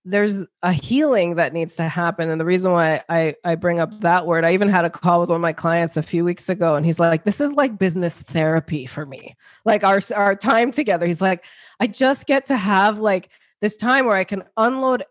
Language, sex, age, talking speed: English, female, 20-39, 240 wpm